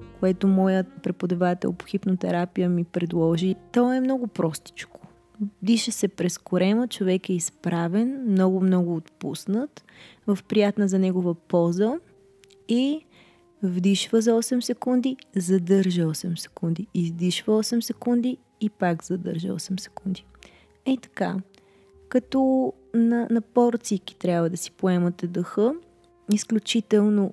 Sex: female